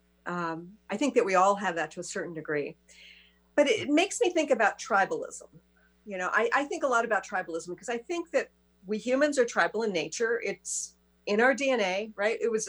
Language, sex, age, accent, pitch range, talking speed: English, female, 50-69, American, 175-245 Hz, 215 wpm